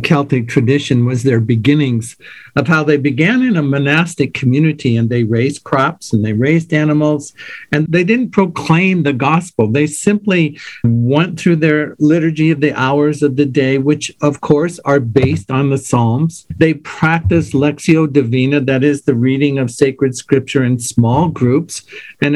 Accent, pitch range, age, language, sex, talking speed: American, 135-165 Hz, 50-69, English, male, 165 wpm